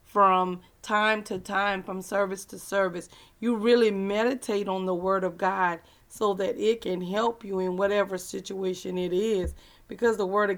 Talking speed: 175 wpm